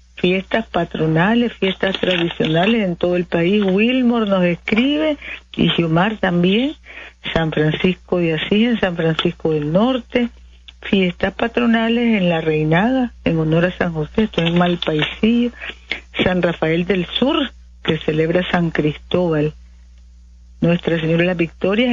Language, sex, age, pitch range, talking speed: Spanish, female, 50-69, 155-205 Hz, 140 wpm